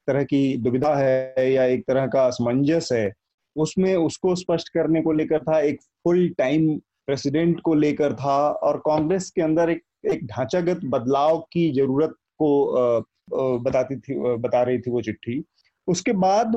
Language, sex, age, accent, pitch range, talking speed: Hindi, male, 30-49, native, 140-170 Hz, 160 wpm